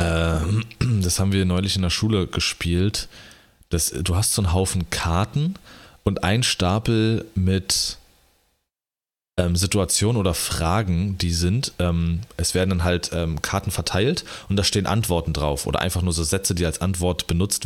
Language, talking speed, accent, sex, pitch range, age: German, 145 wpm, German, male, 85-105 Hz, 30-49